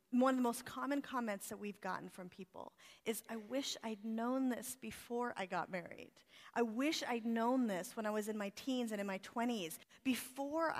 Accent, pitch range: American, 210-270 Hz